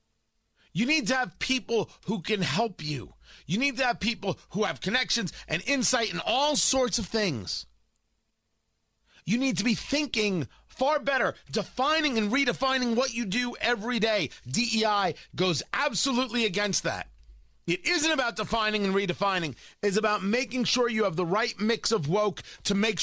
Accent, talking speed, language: American, 165 wpm, English